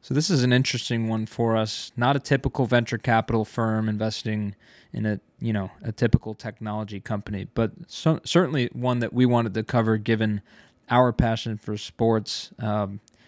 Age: 20-39